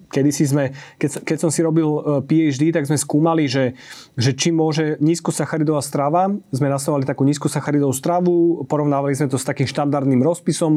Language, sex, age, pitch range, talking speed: Slovak, male, 30-49, 140-170 Hz, 150 wpm